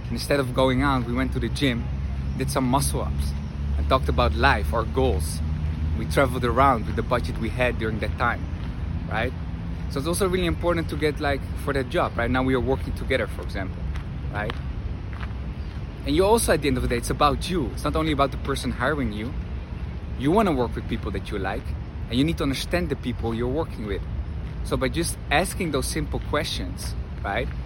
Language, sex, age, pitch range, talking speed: English, male, 20-39, 85-130 Hz, 210 wpm